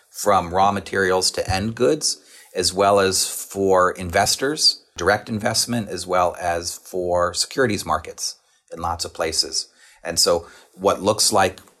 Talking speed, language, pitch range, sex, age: 140 wpm, English, 90-105 Hz, male, 40-59